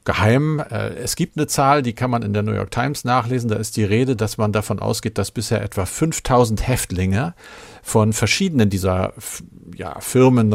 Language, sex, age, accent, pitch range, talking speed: German, male, 50-69, German, 100-120 Hz, 175 wpm